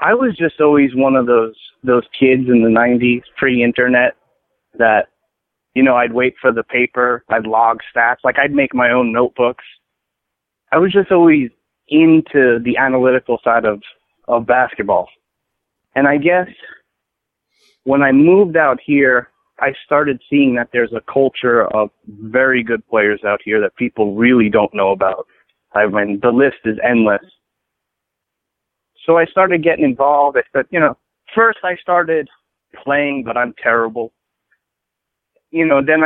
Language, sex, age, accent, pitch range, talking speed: English, male, 30-49, American, 120-150 Hz, 155 wpm